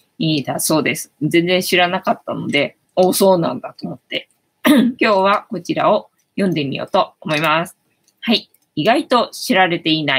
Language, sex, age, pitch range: Japanese, female, 20-39, 160-245 Hz